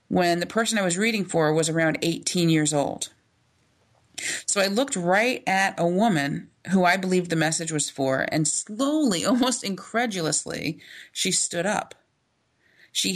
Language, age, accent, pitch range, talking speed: English, 30-49, American, 160-200 Hz, 155 wpm